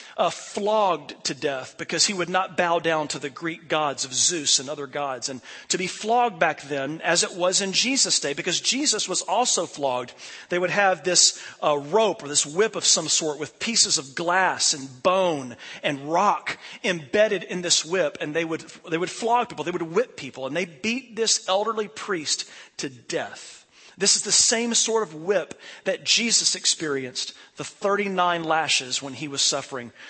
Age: 40-59